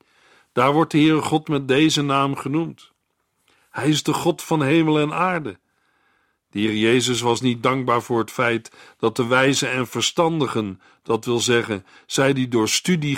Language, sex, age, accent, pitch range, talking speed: Dutch, male, 50-69, Dutch, 115-155 Hz, 175 wpm